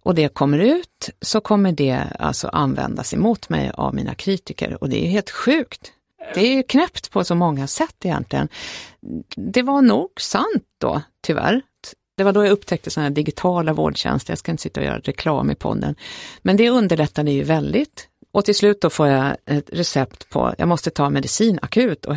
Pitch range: 150-215 Hz